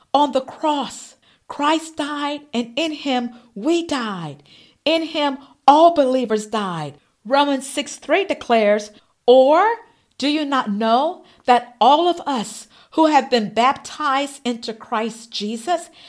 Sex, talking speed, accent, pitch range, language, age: female, 130 wpm, American, 240-305 Hz, English, 50-69